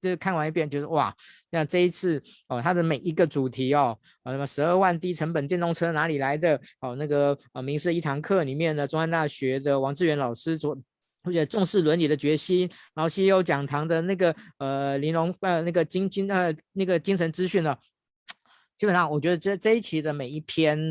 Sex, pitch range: male, 135-170 Hz